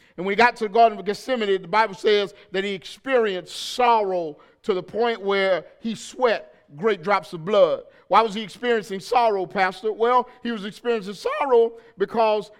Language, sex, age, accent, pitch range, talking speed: English, male, 50-69, American, 200-260 Hz, 180 wpm